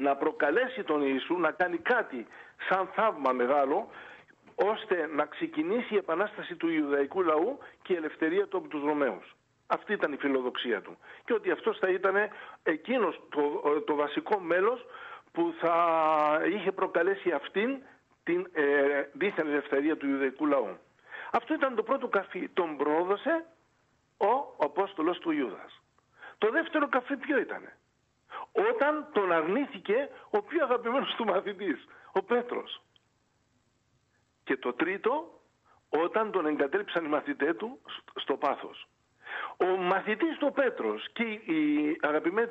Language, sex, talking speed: Greek, male, 135 wpm